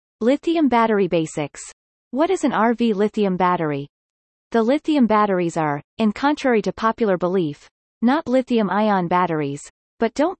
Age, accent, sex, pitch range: 30-49, American, female, 185-245 Hz